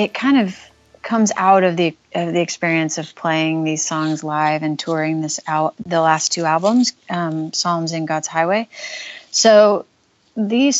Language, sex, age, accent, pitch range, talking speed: English, female, 30-49, American, 165-195 Hz, 170 wpm